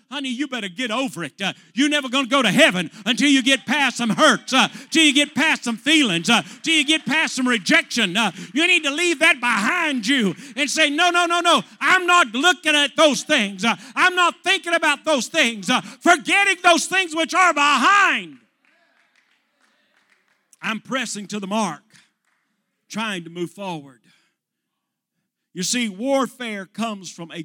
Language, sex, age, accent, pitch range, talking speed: English, male, 50-69, American, 185-275 Hz, 180 wpm